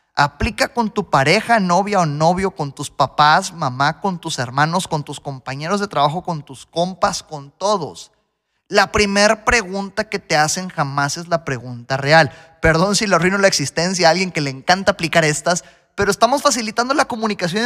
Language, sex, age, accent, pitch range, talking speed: Spanish, male, 20-39, Mexican, 175-245 Hz, 180 wpm